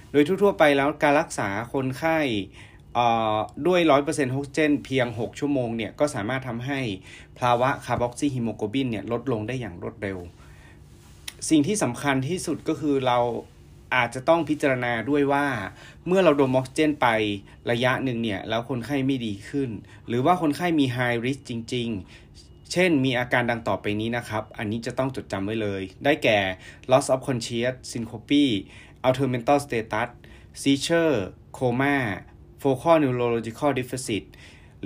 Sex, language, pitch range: male, Thai, 110-140 Hz